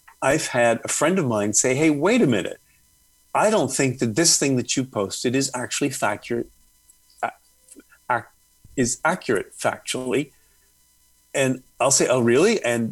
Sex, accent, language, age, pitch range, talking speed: male, American, English, 40-59, 115-140 Hz, 150 wpm